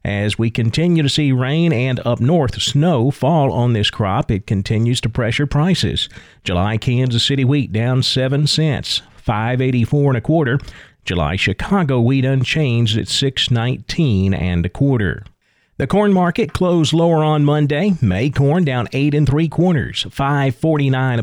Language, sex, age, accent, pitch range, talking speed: English, male, 40-59, American, 115-155 Hz, 155 wpm